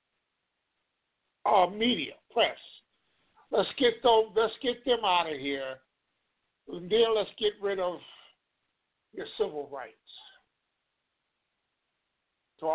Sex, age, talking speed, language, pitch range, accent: male, 60-79, 105 wpm, English, 175-230 Hz, American